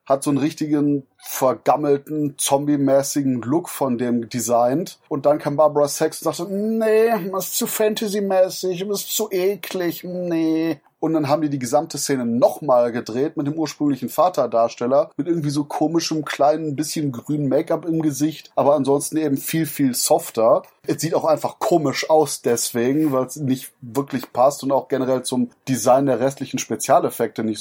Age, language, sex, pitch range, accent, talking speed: 30-49, German, male, 135-160 Hz, German, 170 wpm